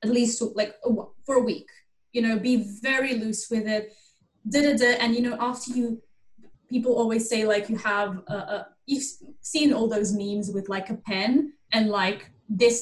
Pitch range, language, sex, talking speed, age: 205-235 Hz, English, female, 185 wpm, 20-39